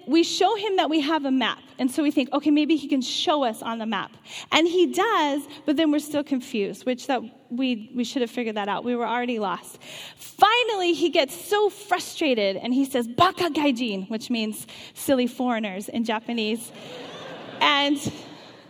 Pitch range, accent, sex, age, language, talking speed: 230-320 Hz, American, female, 10-29, English, 190 wpm